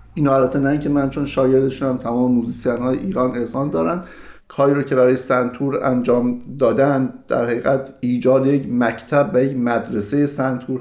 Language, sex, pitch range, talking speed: Persian, male, 125-160 Hz, 155 wpm